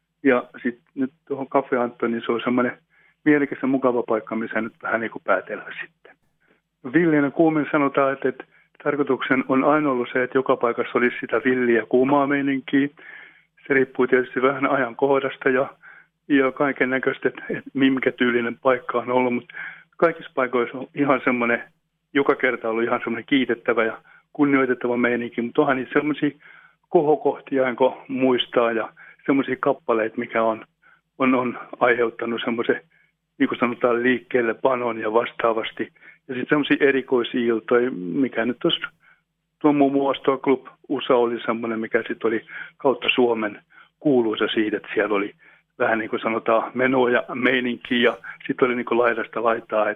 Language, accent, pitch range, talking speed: Finnish, native, 120-140 Hz, 155 wpm